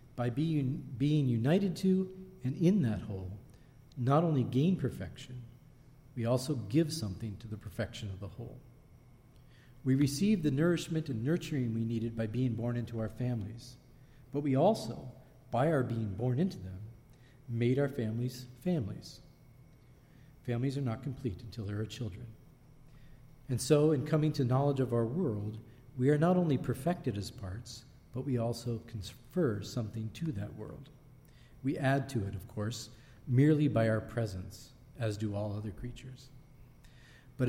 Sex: male